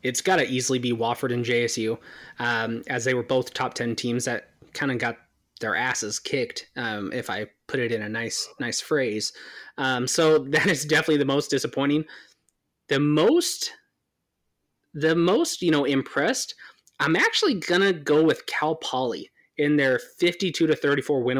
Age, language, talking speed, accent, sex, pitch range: 20-39, English, 170 wpm, American, male, 125-160 Hz